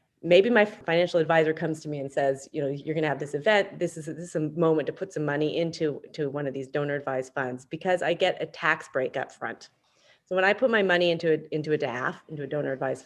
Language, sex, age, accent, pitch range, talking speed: English, female, 30-49, American, 150-190 Hz, 255 wpm